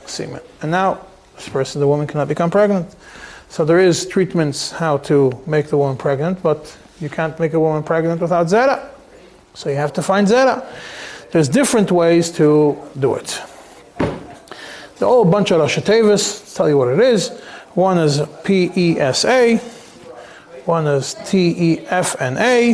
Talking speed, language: 150 wpm, English